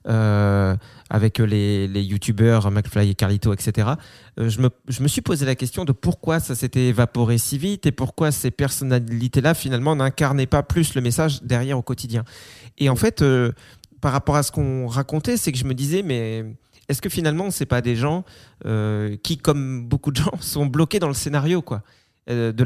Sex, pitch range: male, 120-145 Hz